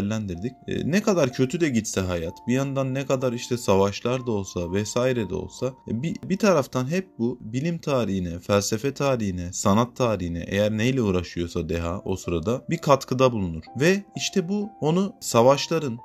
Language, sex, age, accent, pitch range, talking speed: Turkish, male, 30-49, native, 100-140 Hz, 155 wpm